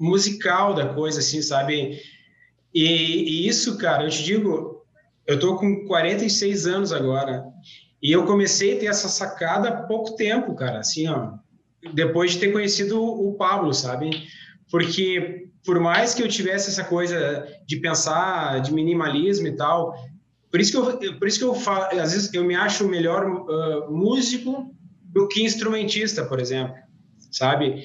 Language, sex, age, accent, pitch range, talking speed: Portuguese, male, 20-39, Brazilian, 160-205 Hz, 160 wpm